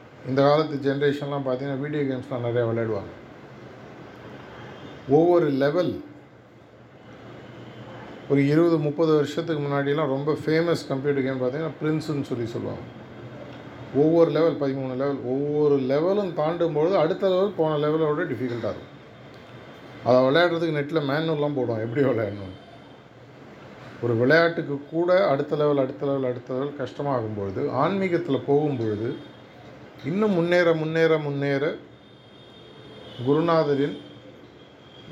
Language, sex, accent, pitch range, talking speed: Tamil, male, native, 125-155 Hz, 105 wpm